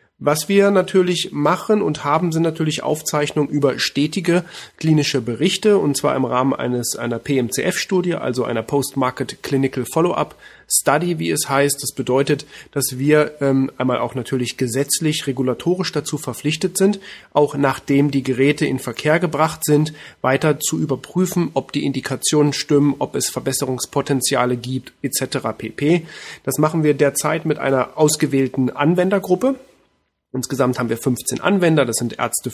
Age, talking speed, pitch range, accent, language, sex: 30-49, 145 wpm, 130-155 Hz, German, German, male